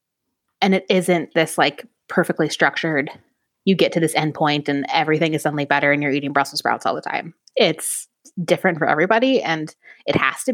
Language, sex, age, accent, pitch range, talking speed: English, female, 20-39, American, 150-205 Hz, 195 wpm